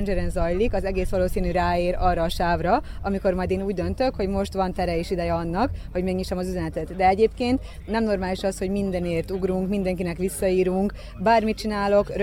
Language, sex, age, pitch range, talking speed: Hungarian, female, 20-39, 185-230 Hz, 180 wpm